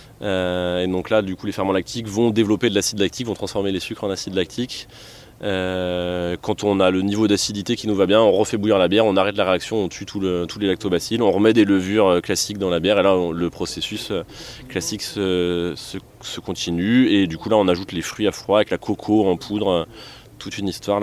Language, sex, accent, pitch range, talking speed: French, male, French, 95-120 Hz, 230 wpm